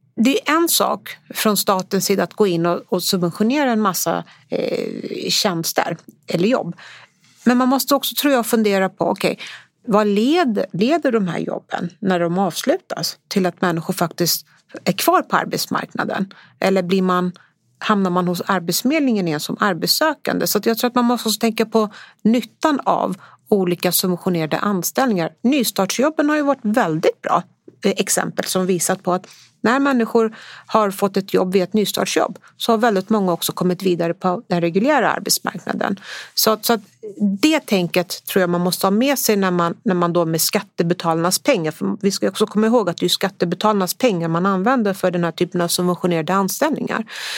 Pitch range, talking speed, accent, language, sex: 180-230 Hz, 170 wpm, native, Swedish, female